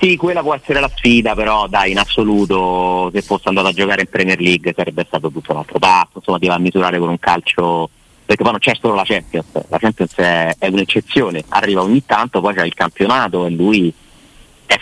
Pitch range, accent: 85-105 Hz, native